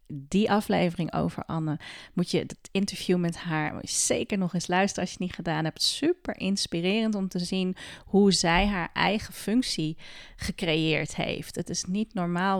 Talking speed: 170 wpm